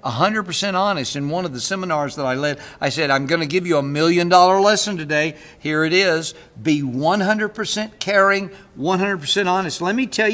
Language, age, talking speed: English, 60-79, 180 wpm